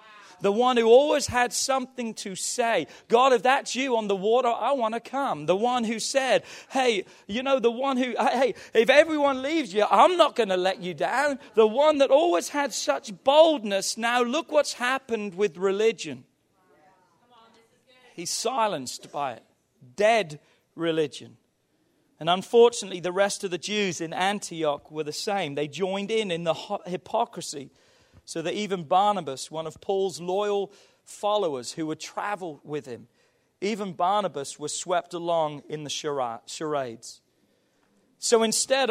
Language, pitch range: English, 165-240 Hz